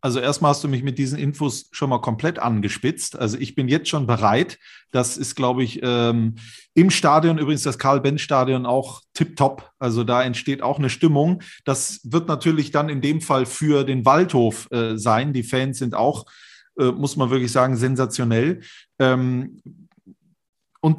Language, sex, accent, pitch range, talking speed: German, male, German, 120-145 Hz, 170 wpm